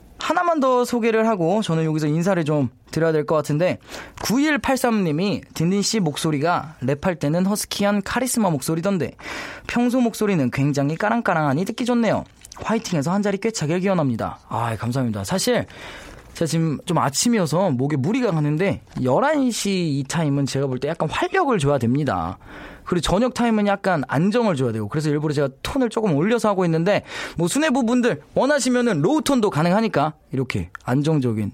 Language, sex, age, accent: Korean, male, 20-39, native